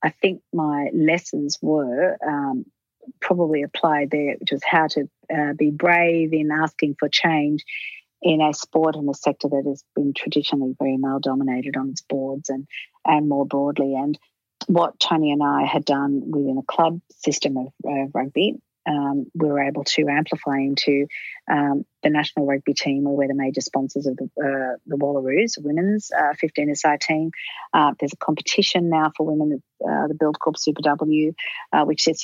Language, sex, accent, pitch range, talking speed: English, female, Australian, 145-160 Hz, 175 wpm